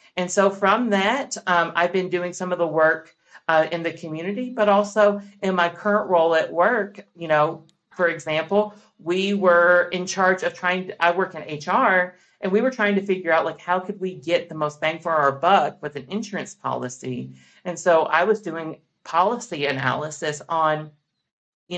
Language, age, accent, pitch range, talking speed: English, 40-59, American, 160-195 Hz, 190 wpm